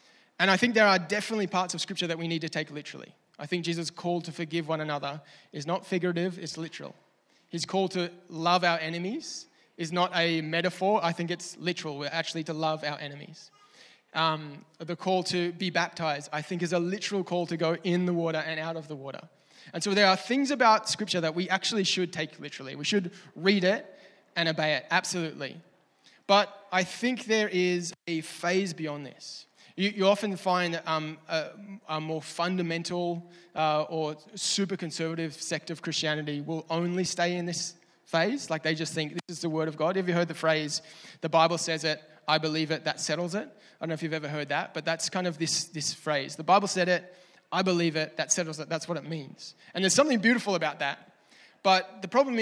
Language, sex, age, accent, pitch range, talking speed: English, male, 20-39, Australian, 160-185 Hz, 210 wpm